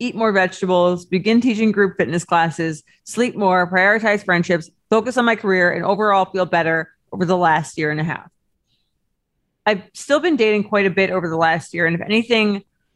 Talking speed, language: 190 wpm, English